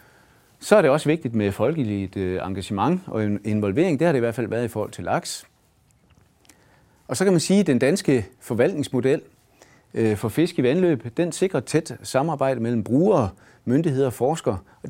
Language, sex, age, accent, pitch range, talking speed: Danish, male, 30-49, native, 105-135 Hz, 175 wpm